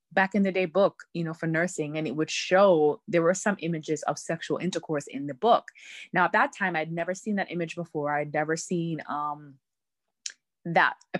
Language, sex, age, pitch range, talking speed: English, female, 20-39, 150-185 Hz, 210 wpm